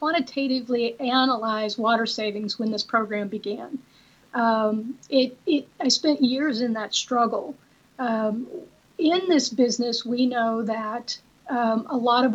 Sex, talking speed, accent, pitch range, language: female, 135 wpm, American, 225-265 Hz, English